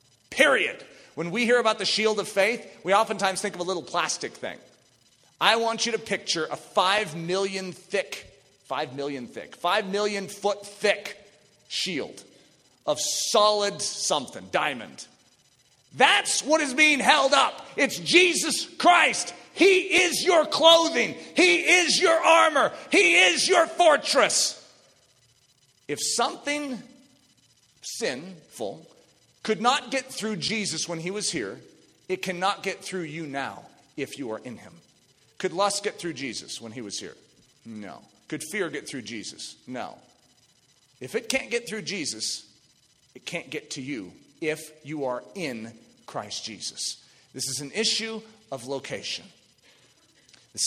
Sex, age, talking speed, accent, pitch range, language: male, 40-59, 145 wpm, American, 170-265 Hz, English